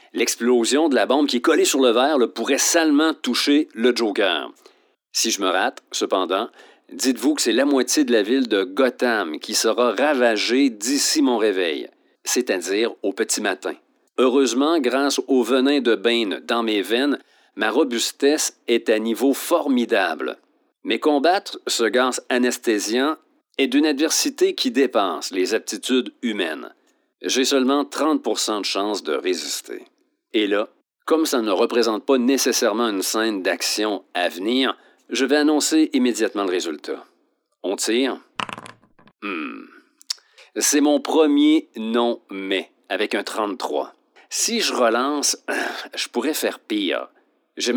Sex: male